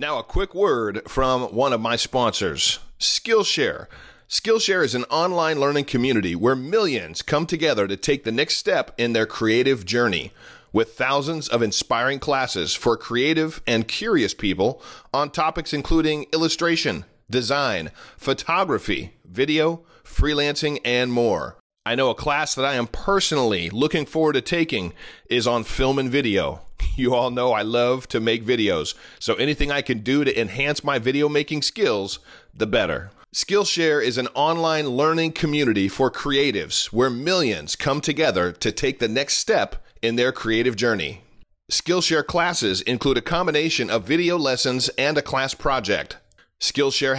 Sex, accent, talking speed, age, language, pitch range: male, American, 155 wpm, 40-59, English, 120-155 Hz